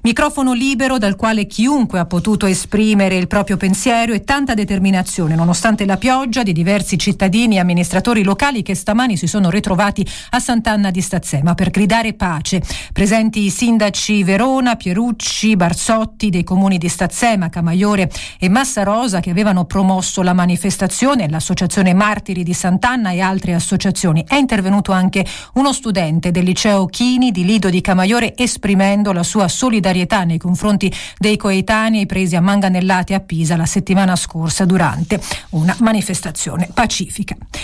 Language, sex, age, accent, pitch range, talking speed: Italian, female, 40-59, native, 185-220 Hz, 150 wpm